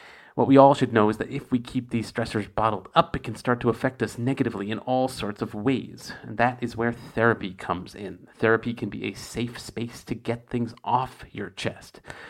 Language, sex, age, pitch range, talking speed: English, male, 40-59, 105-130 Hz, 220 wpm